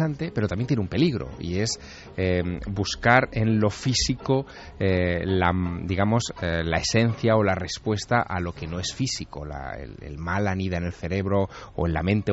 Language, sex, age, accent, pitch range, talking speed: Spanish, male, 30-49, Spanish, 85-120 Hz, 190 wpm